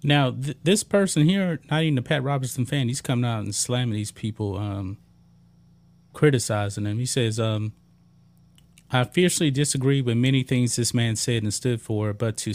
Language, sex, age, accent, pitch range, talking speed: English, male, 30-49, American, 115-140 Hz, 175 wpm